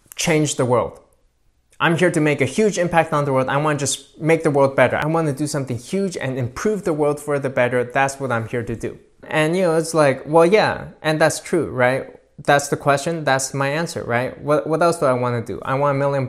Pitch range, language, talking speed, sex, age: 125-155 Hz, English, 245 wpm, male, 20-39